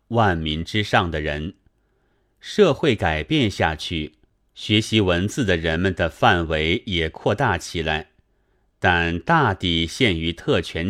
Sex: male